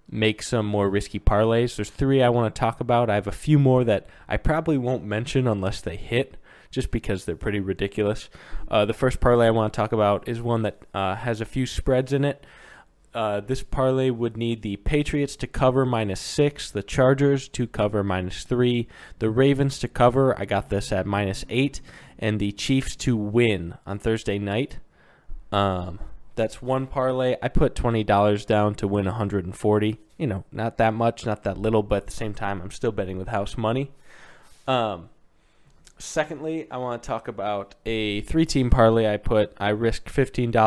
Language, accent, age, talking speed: English, American, 20-39, 185 wpm